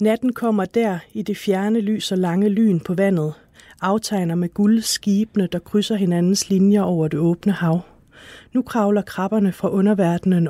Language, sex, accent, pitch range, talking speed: Danish, female, native, 180-215 Hz, 165 wpm